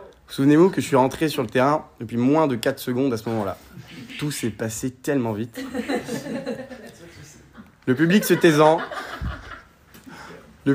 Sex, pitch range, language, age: male, 125-165 Hz, French, 20-39